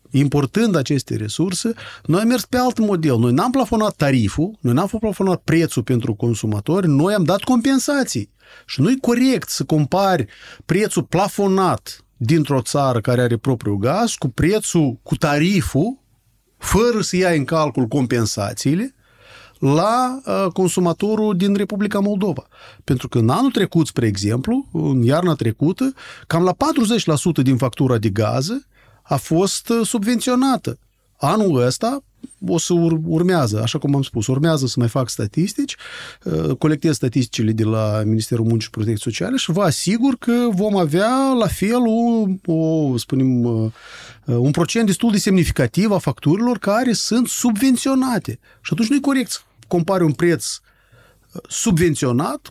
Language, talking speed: Romanian, 140 wpm